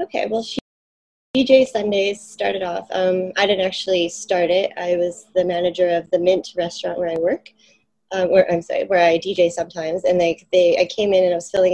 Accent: American